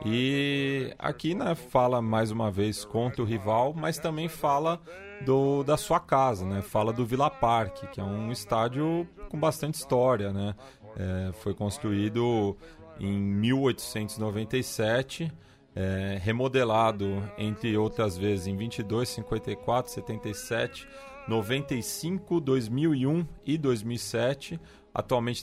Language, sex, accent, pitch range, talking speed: Portuguese, male, Brazilian, 110-140 Hz, 115 wpm